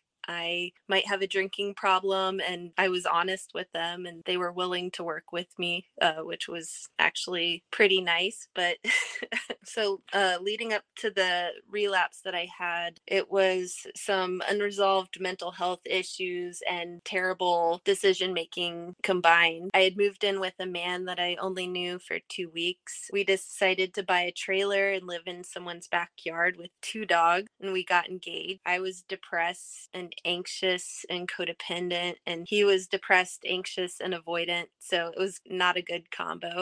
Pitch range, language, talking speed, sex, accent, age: 175-195 Hz, English, 165 wpm, female, American, 20-39